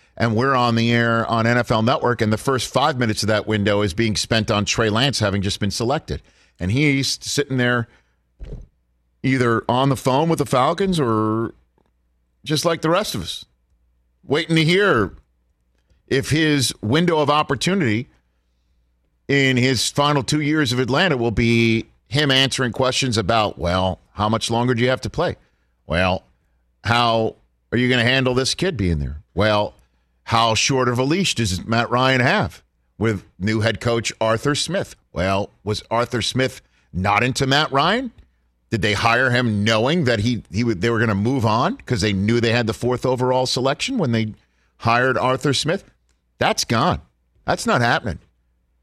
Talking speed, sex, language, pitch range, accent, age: 175 wpm, male, English, 100-135 Hz, American, 50-69